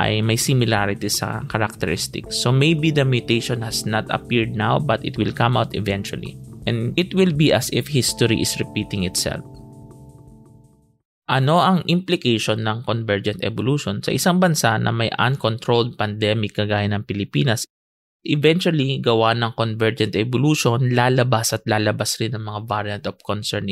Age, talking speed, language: 20-39, 145 wpm, English